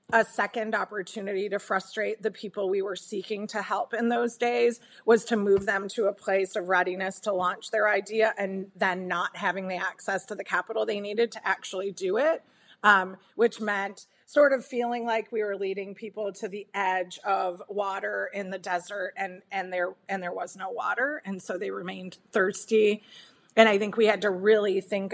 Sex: female